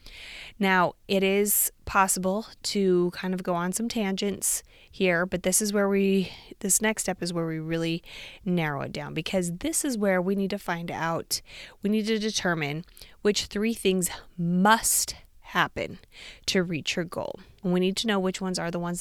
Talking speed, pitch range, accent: 185 wpm, 175-205 Hz, American